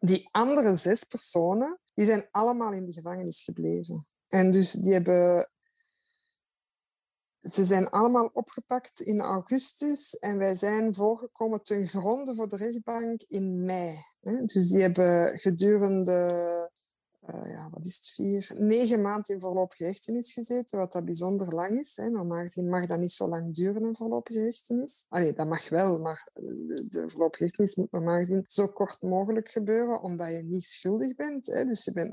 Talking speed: 165 wpm